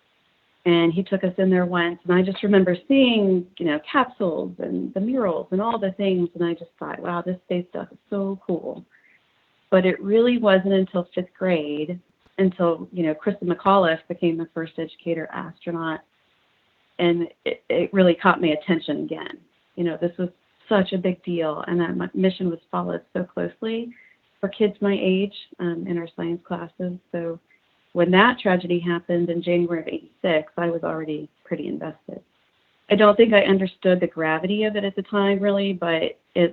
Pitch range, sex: 165-195 Hz, female